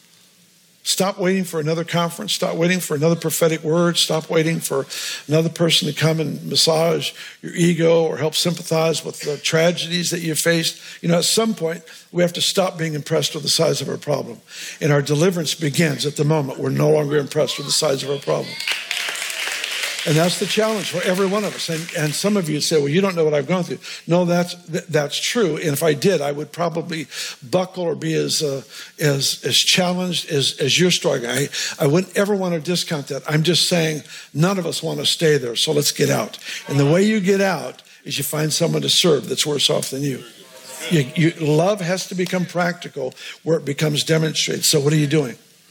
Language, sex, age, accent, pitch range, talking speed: English, male, 50-69, American, 150-175 Hz, 215 wpm